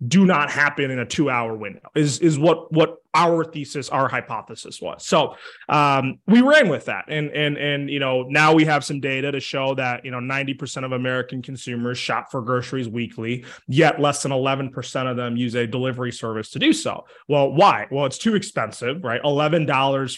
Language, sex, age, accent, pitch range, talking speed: English, male, 20-39, American, 130-165 Hz, 200 wpm